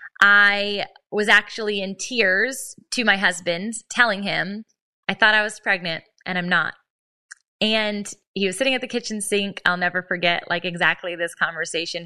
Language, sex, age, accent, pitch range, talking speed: English, female, 20-39, American, 180-225 Hz, 165 wpm